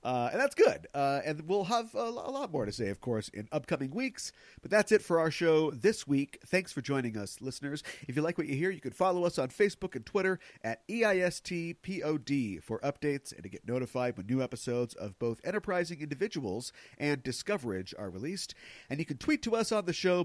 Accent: American